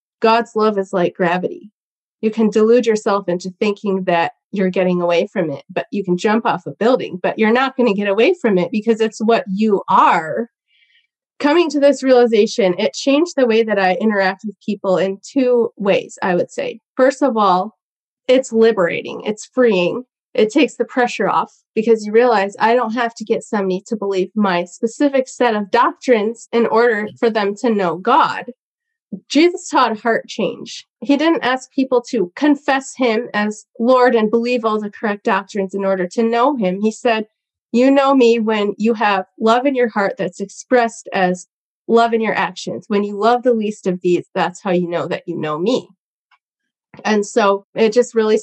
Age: 30-49